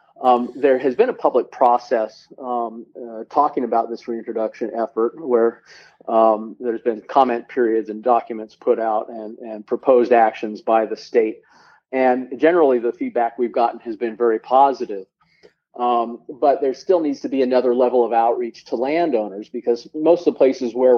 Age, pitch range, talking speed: 40-59, 115-130 Hz, 170 wpm